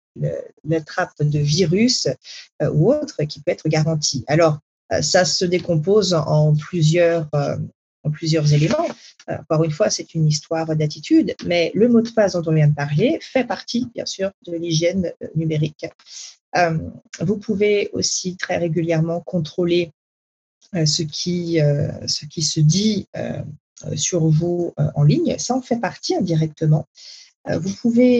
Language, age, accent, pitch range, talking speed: French, 40-59, French, 150-185 Hz, 170 wpm